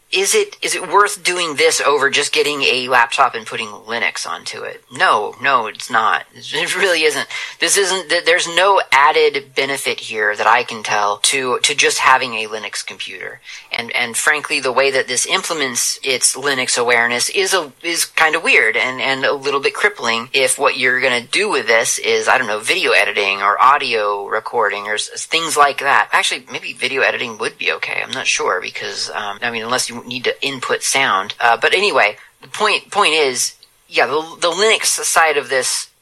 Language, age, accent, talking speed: English, 30-49, American, 200 wpm